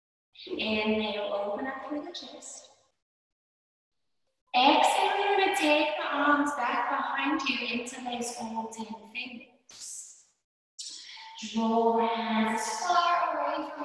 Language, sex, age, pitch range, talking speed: English, female, 20-39, 215-270 Hz, 115 wpm